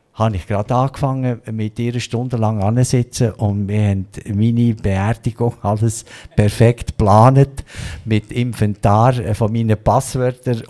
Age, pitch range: 50-69, 110-135 Hz